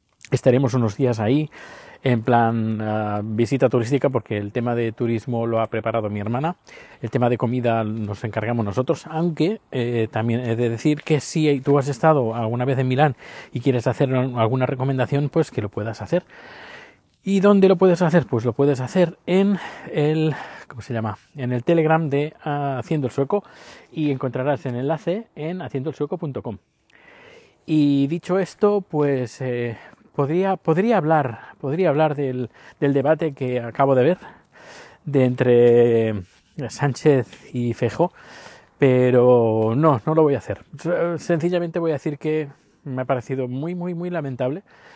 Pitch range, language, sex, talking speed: 125-155 Hz, Spanish, male, 160 wpm